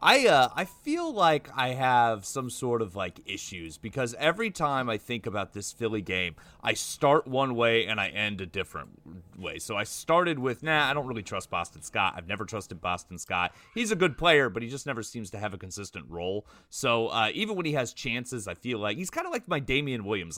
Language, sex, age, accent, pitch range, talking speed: English, male, 30-49, American, 105-150 Hz, 230 wpm